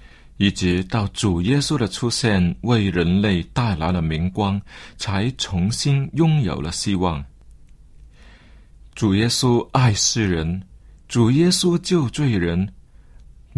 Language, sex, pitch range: Chinese, male, 90-135 Hz